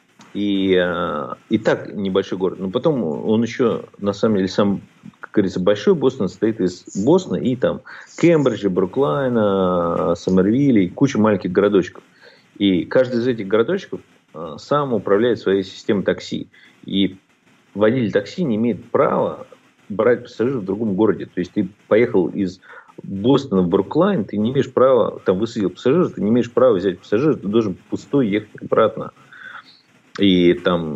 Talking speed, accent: 155 wpm, native